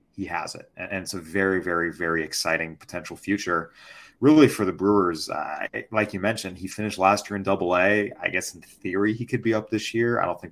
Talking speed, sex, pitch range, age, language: 230 wpm, male, 90-110 Hz, 30-49, English